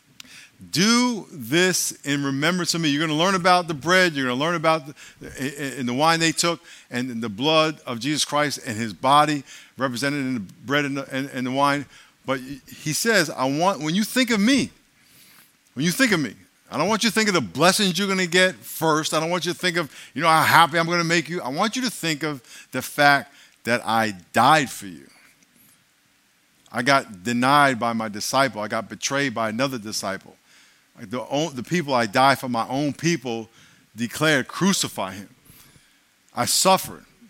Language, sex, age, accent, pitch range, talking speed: English, male, 50-69, American, 130-175 Hz, 195 wpm